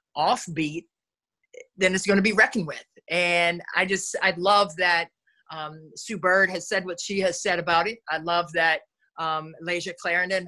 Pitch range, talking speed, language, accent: 170-210 Hz, 180 wpm, English, American